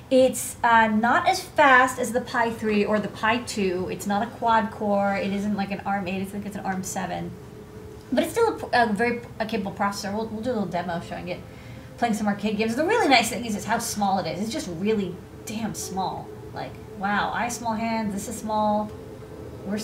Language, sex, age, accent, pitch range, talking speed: English, female, 30-49, American, 195-235 Hz, 225 wpm